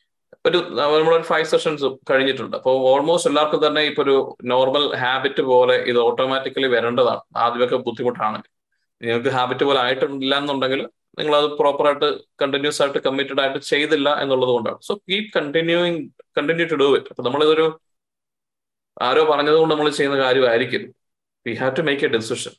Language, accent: Malayalam, native